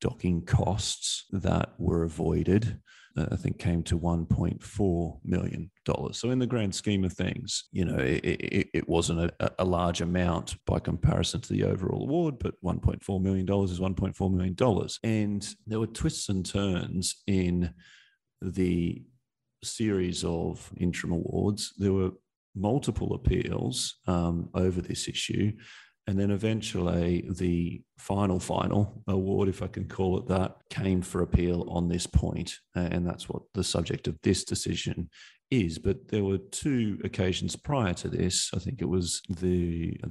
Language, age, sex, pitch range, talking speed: English, 40-59, male, 90-100 Hz, 155 wpm